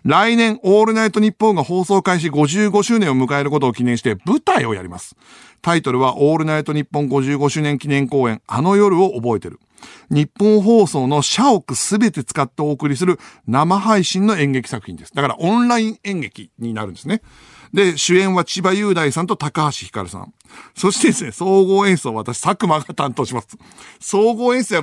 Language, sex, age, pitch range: Japanese, male, 60-79, 120-190 Hz